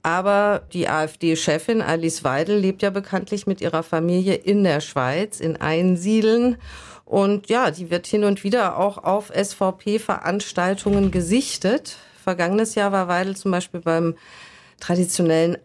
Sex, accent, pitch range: female, German, 170-205 Hz